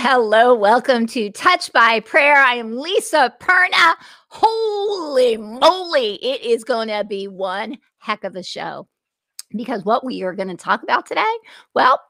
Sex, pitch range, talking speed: female, 215-315 Hz, 155 wpm